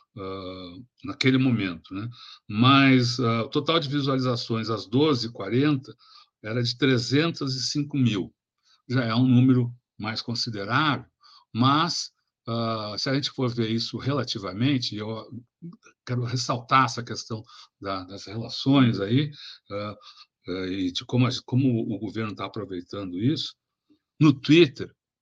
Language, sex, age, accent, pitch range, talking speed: Portuguese, male, 60-79, Brazilian, 115-155 Hz, 130 wpm